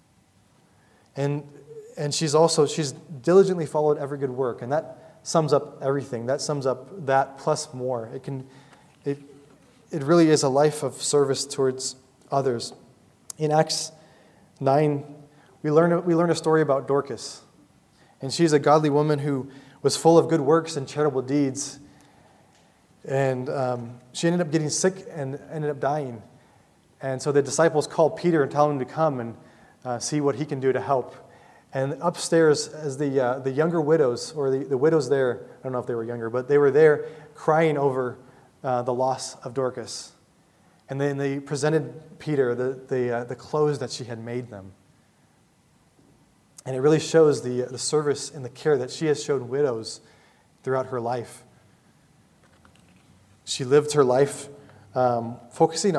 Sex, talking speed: male, 170 wpm